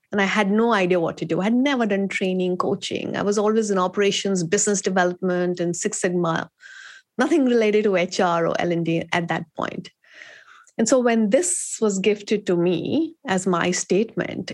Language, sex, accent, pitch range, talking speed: English, female, Indian, 180-215 Hz, 180 wpm